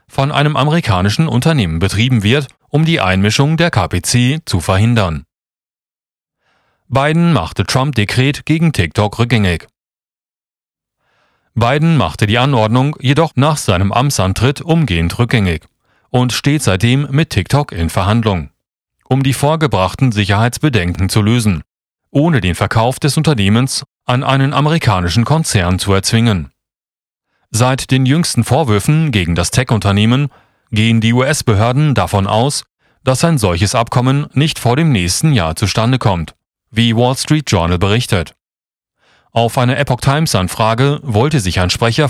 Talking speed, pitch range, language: 125 wpm, 100-140 Hz, German